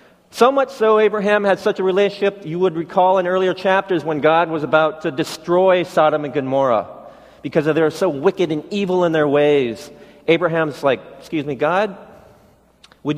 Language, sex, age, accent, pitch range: Korean, male, 40-59, American, 165-225 Hz